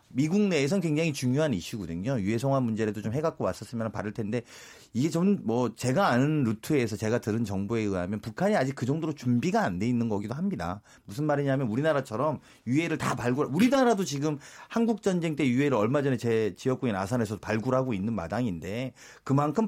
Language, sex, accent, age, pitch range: Korean, male, native, 40-59, 115-160 Hz